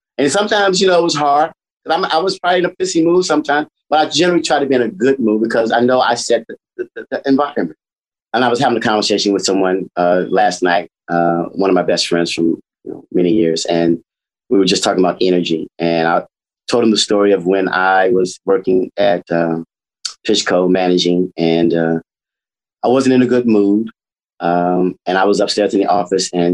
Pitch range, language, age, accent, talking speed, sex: 90-115 Hz, English, 30-49, American, 215 wpm, male